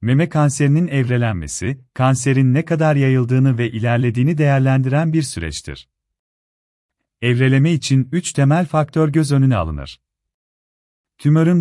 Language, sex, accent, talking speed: Turkish, male, native, 110 wpm